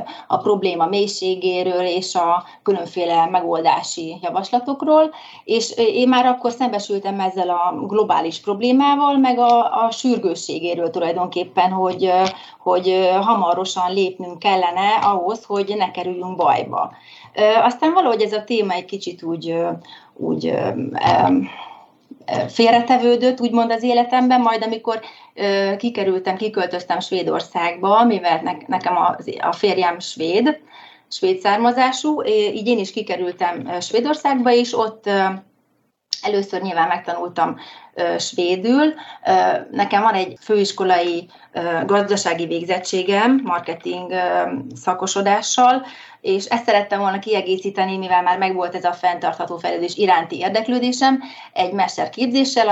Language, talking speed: Hungarian, 105 wpm